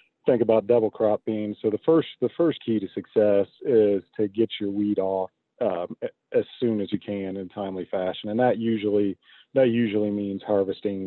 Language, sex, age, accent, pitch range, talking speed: English, male, 40-59, American, 95-110 Hz, 190 wpm